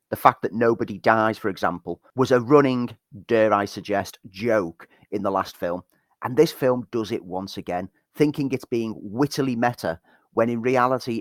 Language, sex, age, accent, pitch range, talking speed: English, male, 30-49, British, 95-130 Hz, 175 wpm